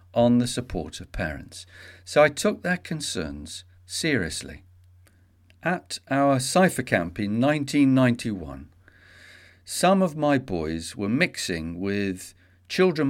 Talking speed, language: 115 wpm, English